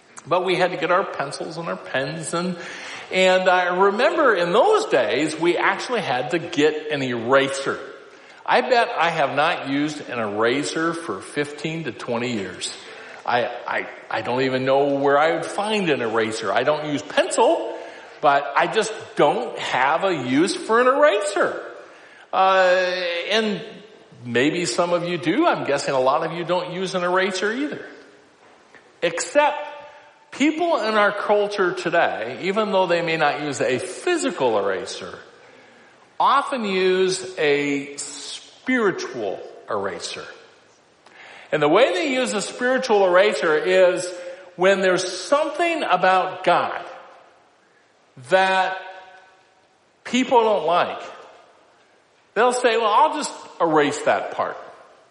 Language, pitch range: English, 165-250 Hz